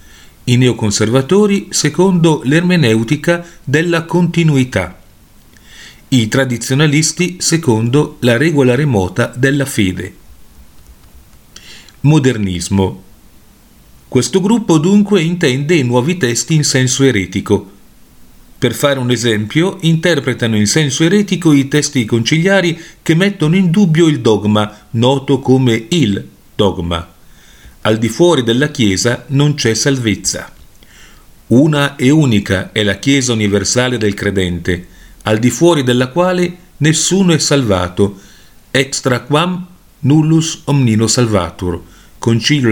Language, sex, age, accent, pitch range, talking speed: Italian, male, 40-59, native, 100-155 Hz, 110 wpm